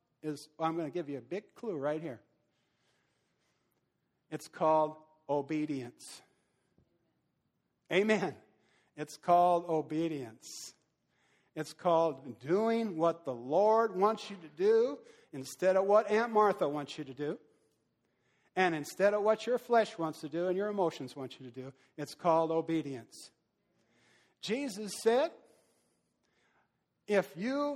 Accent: American